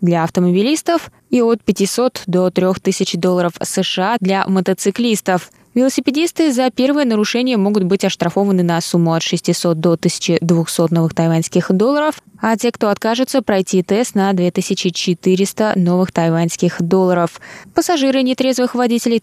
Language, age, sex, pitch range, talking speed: Russian, 20-39, female, 175-220 Hz, 130 wpm